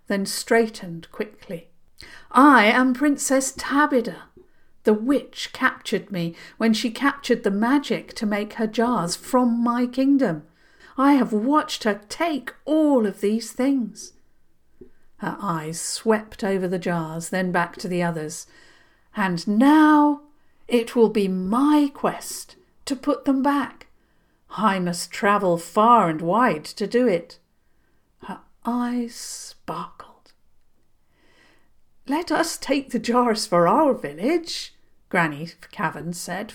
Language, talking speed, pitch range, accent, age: English, 125 wpm, 175-265 Hz, British, 50-69